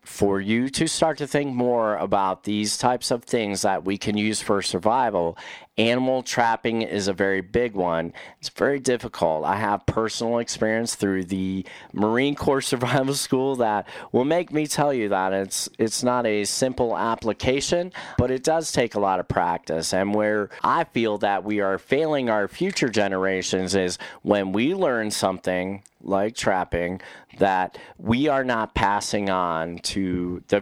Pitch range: 100-130 Hz